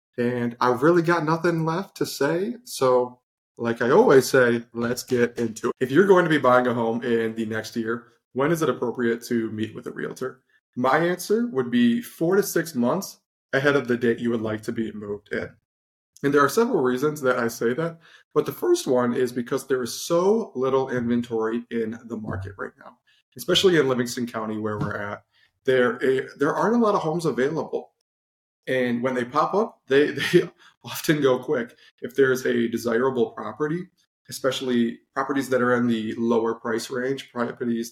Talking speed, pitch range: 195 wpm, 115-145 Hz